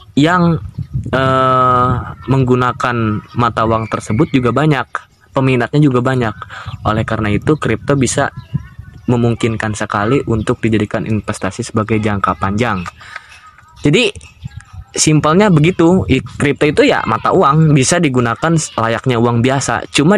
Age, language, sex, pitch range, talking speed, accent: 20-39, Indonesian, male, 115-145 Hz, 115 wpm, native